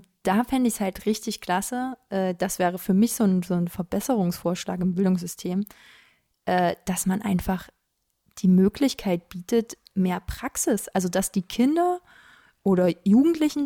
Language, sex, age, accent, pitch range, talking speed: German, female, 20-39, German, 190-225 Hz, 135 wpm